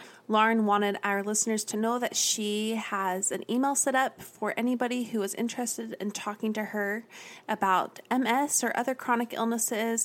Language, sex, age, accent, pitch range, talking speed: English, female, 30-49, American, 185-230 Hz, 165 wpm